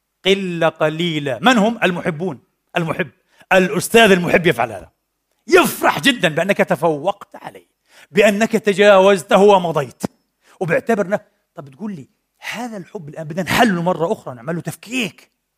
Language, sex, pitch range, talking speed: Arabic, male, 165-215 Hz, 120 wpm